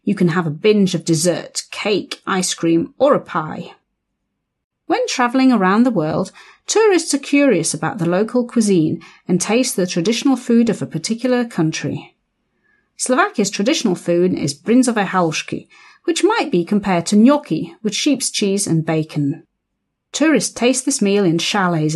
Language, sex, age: Slovak, female, 40-59